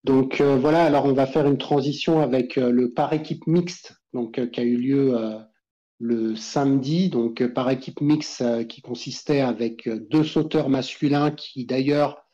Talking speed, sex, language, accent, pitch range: 190 wpm, male, French, French, 120-145 Hz